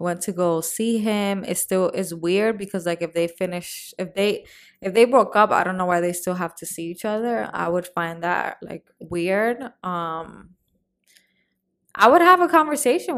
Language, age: English, 20-39